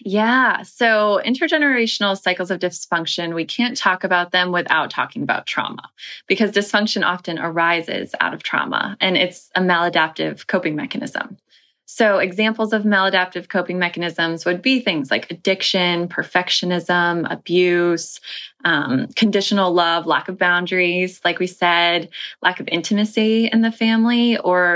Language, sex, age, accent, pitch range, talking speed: English, female, 20-39, American, 175-220 Hz, 140 wpm